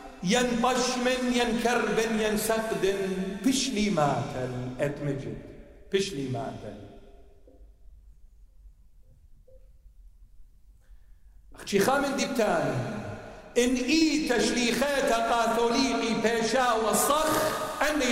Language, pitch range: English, 150-245 Hz